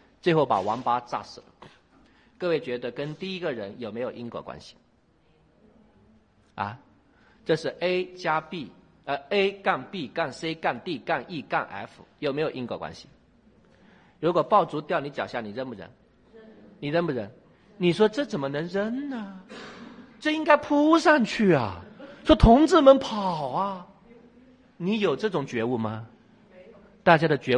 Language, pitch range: Chinese, 140-215 Hz